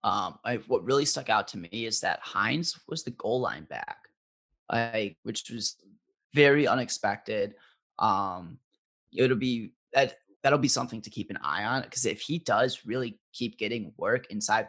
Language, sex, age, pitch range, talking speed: English, male, 20-39, 110-150 Hz, 170 wpm